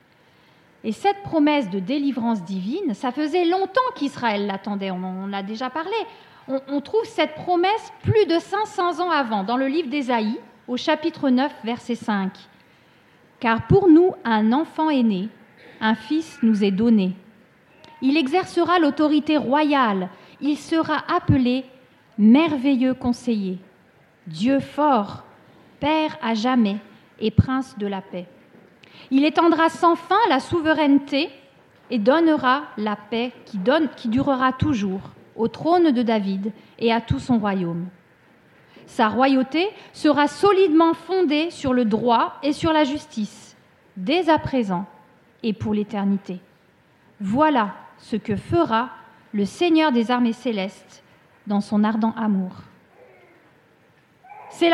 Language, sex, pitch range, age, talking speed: French, female, 220-310 Hz, 40-59, 135 wpm